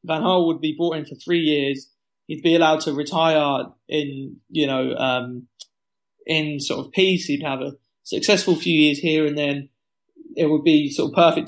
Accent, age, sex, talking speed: British, 20-39, male, 195 wpm